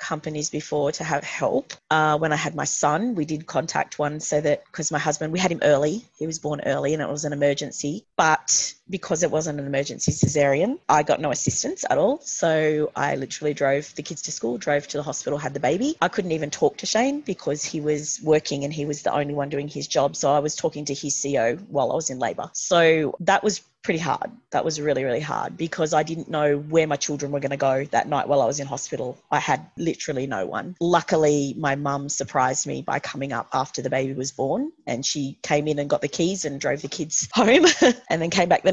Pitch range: 145-175 Hz